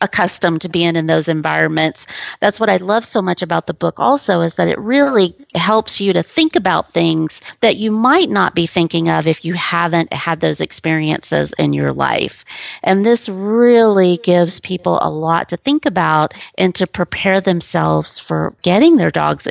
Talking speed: 185 wpm